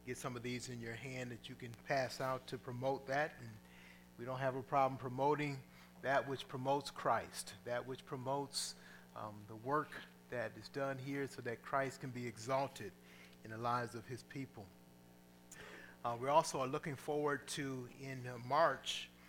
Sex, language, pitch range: male, English, 115-140 Hz